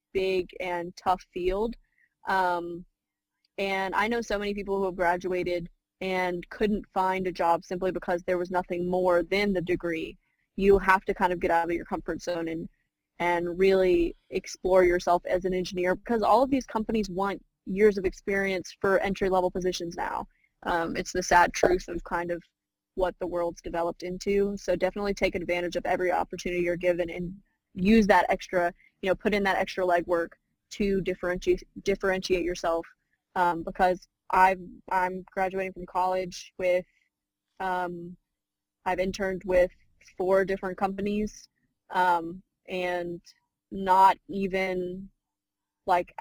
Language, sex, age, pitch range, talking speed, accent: English, female, 20-39, 175-195 Hz, 150 wpm, American